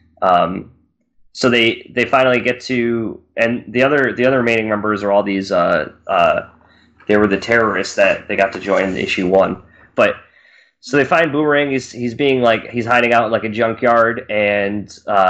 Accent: American